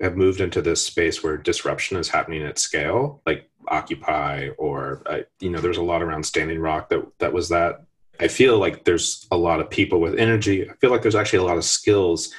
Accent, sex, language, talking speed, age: American, male, English, 225 wpm, 30-49